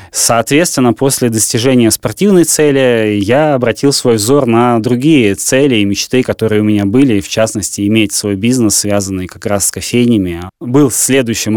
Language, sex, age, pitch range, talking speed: Russian, male, 20-39, 105-130 Hz, 160 wpm